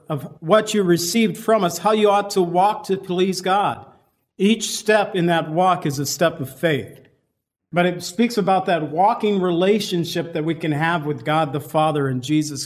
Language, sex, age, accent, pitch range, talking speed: English, male, 50-69, American, 145-180 Hz, 195 wpm